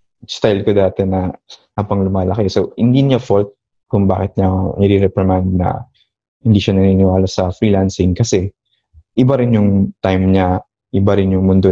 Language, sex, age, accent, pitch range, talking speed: English, male, 20-39, Filipino, 95-110 Hz, 150 wpm